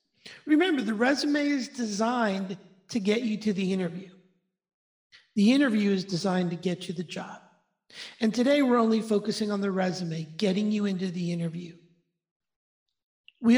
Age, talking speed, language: 50-69, 150 wpm, English